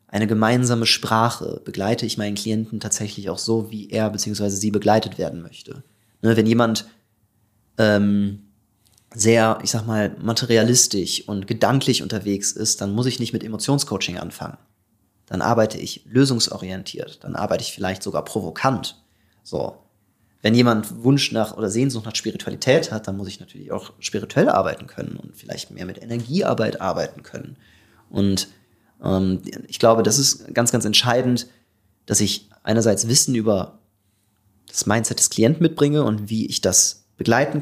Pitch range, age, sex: 105-120 Hz, 30-49, male